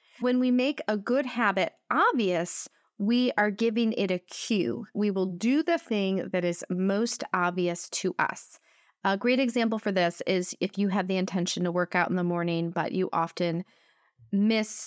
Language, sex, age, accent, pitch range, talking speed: English, female, 30-49, American, 180-240 Hz, 180 wpm